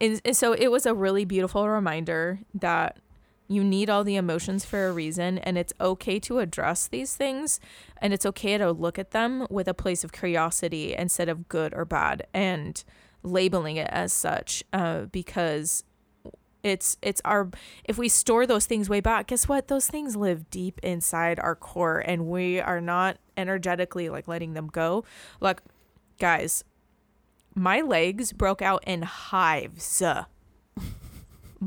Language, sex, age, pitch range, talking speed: English, female, 20-39, 170-225 Hz, 160 wpm